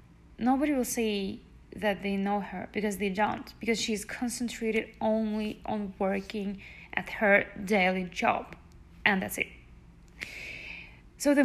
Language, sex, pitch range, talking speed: English, female, 195-225 Hz, 130 wpm